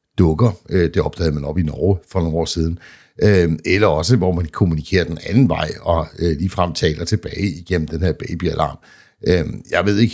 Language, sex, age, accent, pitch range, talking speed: Danish, male, 60-79, native, 80-95 Hz, 180 wpm